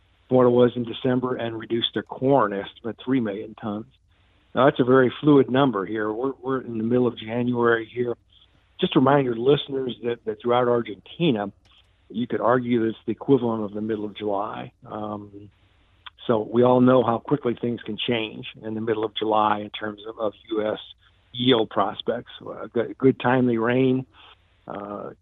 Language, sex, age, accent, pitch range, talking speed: English, male, 50-69, American, 105-130 Hz, 185 wpm